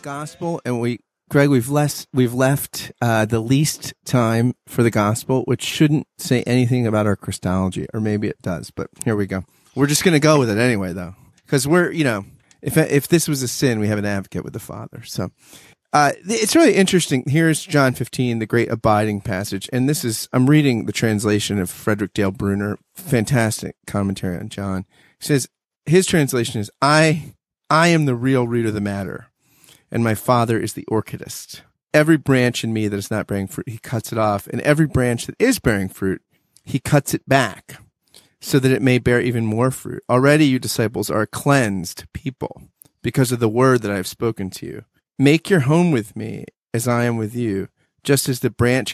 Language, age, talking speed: English, 30-49, 200 wpm